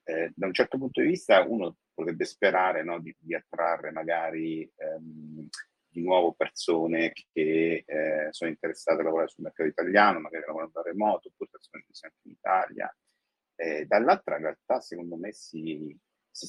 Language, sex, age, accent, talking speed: Italian, male, 40-59, native, 165 wpm